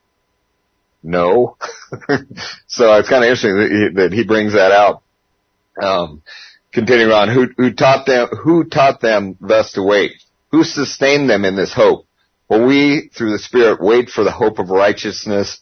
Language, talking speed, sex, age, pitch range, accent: English, 165 wpm, male, 50-69, 95-125 Hz, American